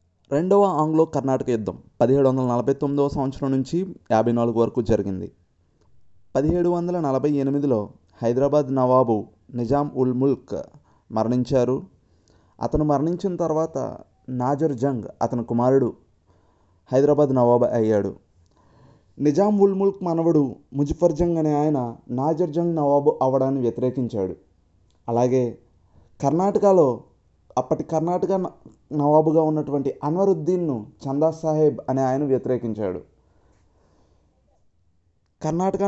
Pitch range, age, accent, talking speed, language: 115-160 Hz, 30-49, native, 95 wpm, Telugu